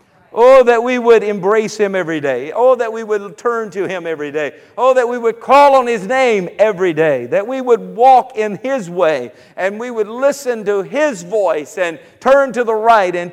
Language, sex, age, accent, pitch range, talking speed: English, male, 50-69, American, 165-230 Hz, 210 wpm